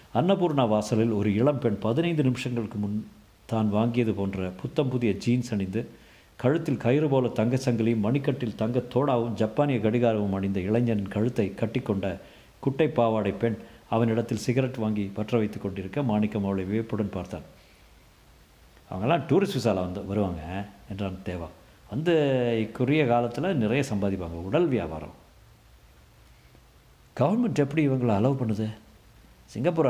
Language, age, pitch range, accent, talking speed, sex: Tamil, 50-69, 95-125 Hz, native, 125 wpm, male